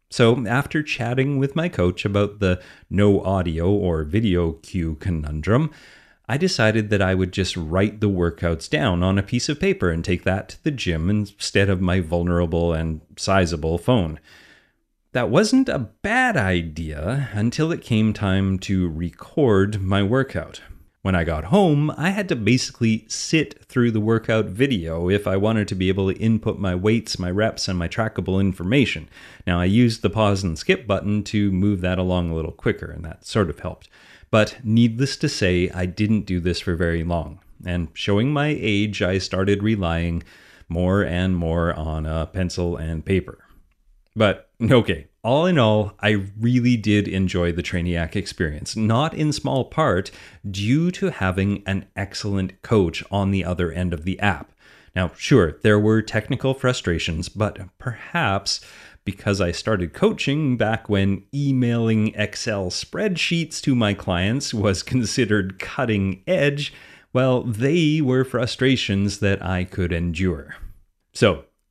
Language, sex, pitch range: English, male, 90-120 Hz